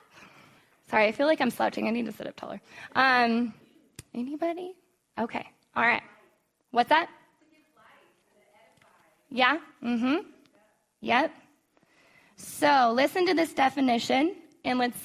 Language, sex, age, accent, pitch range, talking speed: English, female, 10-29, American, 225-280 Hz, 120 wpm